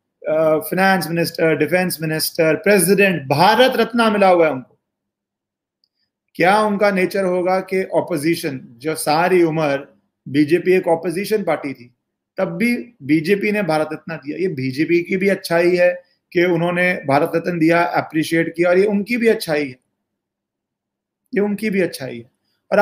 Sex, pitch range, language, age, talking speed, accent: male, 160-195 Hz, Hindi, 30-49, 150 wpm, native